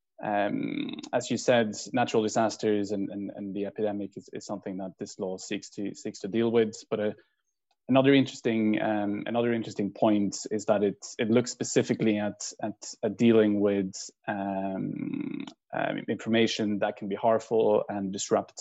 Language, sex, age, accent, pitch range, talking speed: English, male, 20-39, Norwegian, 100-115 Hz, 165 wpm